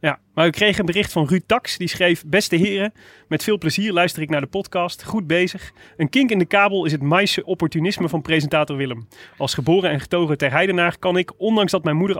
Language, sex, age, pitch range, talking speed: Dutch, male, 30-49, 150-185 Hz, 230 wpm